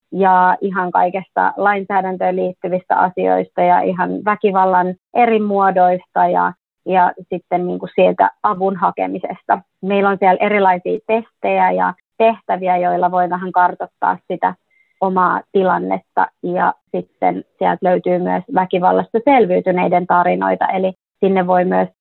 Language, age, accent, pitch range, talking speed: Finnish, 30-49, native, 135-195 Hz, 125 wpm